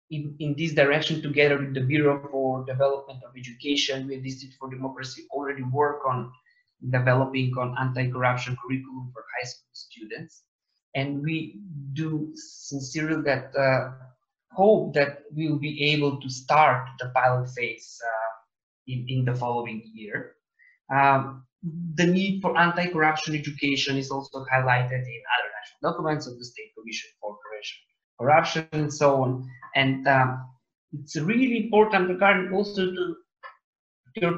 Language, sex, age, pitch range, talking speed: English, male, 20-39, 125-155 Hz, 145 wpm